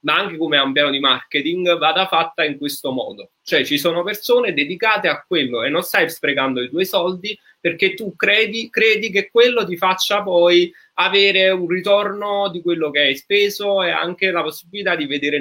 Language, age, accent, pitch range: Italian, 30-49, native, 150-200 Hz